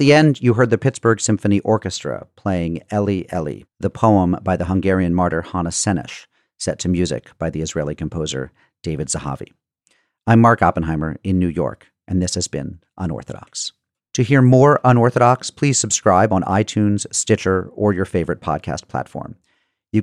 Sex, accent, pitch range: male, American, 90-115 Hz